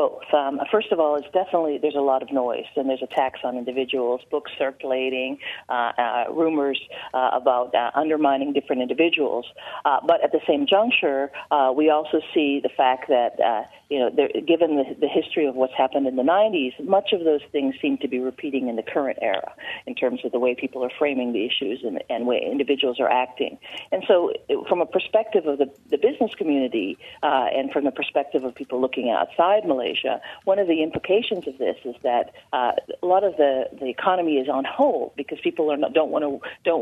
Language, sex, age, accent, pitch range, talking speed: English, female, 40-59, American, 140-180 Hz, 210 wpm